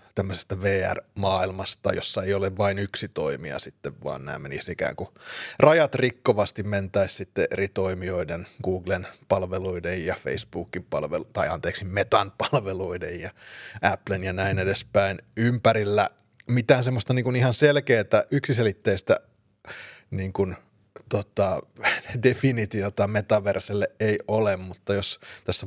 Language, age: Finnish, 30-49